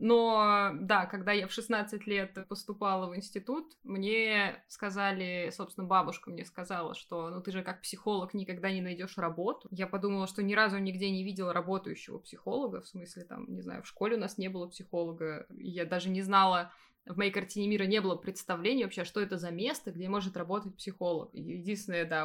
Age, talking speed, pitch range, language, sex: 20-39, 190 wpm, 180-205 Hz, Russian, female